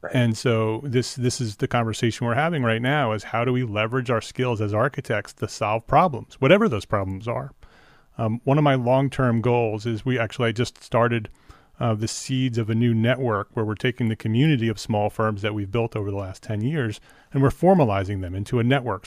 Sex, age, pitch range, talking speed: male, 30-49, 110-135 Hz, 220 wpm